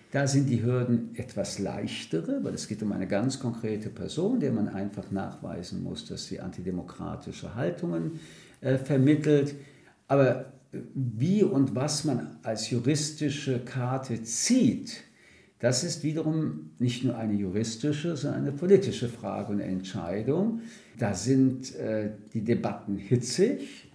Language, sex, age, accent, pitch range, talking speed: German, male, 50-69, German, 100-140 Hz, 135 wpm